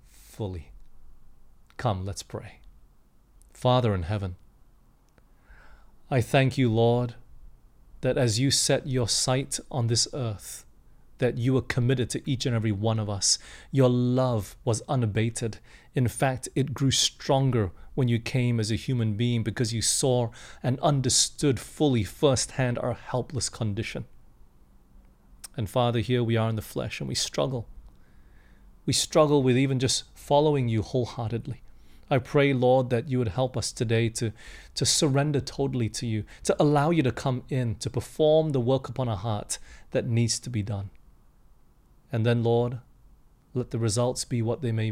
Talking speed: 160 wpm